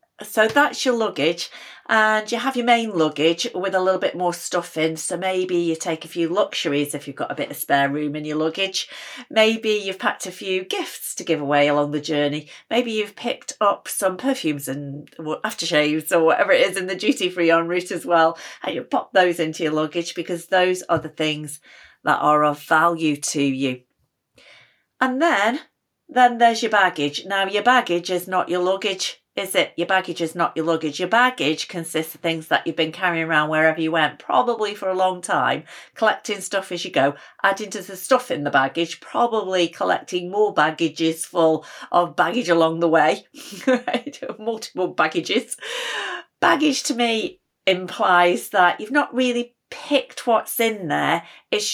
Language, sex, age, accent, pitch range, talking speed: English, female, 40-59, British, 160-215 Hz, 185 wpm